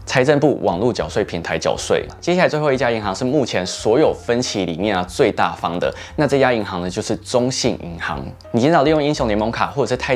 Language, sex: Chinese, male